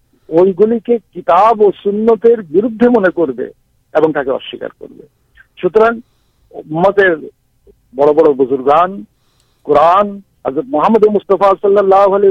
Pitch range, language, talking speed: 145-205 Hz, Urdu, 80 wpm